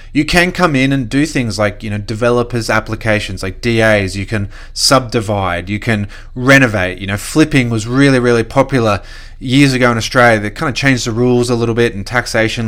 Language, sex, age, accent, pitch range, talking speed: English, male, 20-39, Australian, 110-125 Hz, 200 wpm